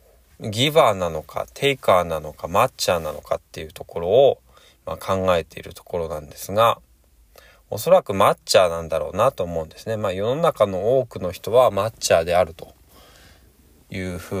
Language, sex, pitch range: Japanese, male, 75-115 Hz